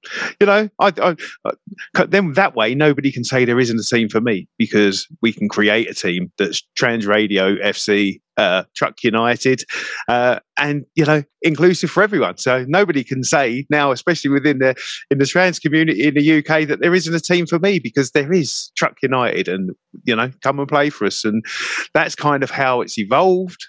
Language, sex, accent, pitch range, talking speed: English, male, British, 110-150 Hz, 200 wpm